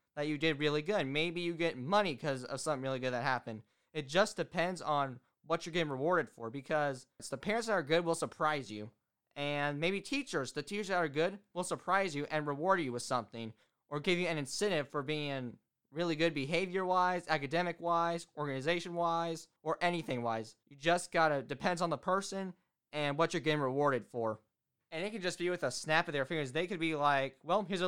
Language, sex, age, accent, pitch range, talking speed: English, male, 20-39, American, 140-175 Hz, 210 wpm